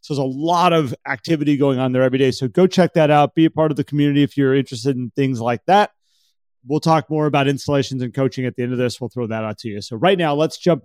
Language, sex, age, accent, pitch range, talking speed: English, male, 30-49, American, 125-150 Hz, 290 wpm